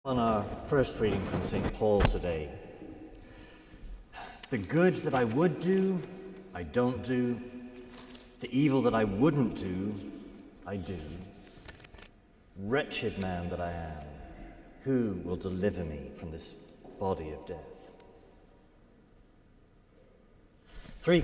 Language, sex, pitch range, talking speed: English, male, 95-145 Hz, 115 wpm